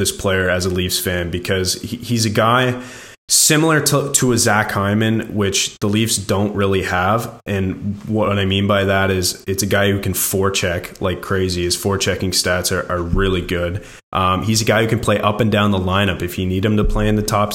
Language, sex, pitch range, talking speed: English, male, 90-105 Hz, 220 wpm